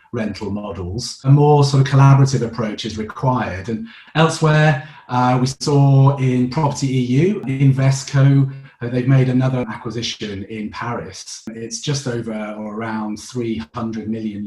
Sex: male